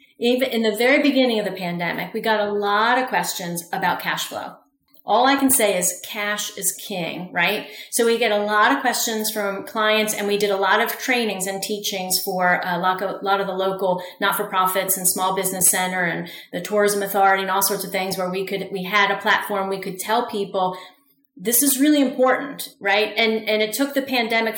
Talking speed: 210 wpm